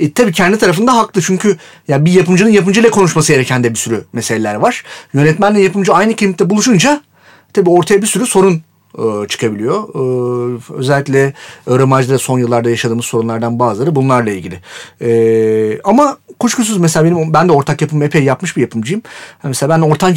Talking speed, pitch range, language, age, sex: 165 wpm, 135-195 Hz, Turkish, 40-59, male